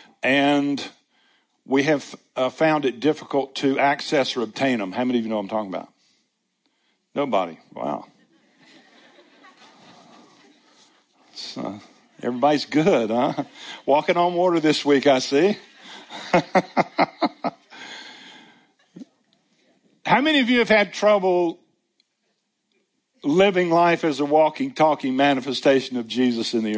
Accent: American